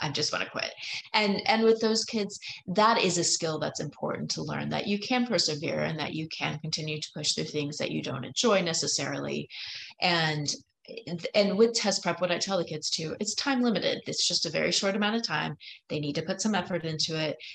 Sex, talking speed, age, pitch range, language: female, 225 wpm, 30-49, 145-190 Hz, English